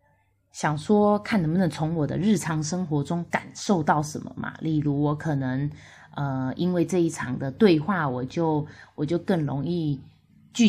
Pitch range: 140-185 Hz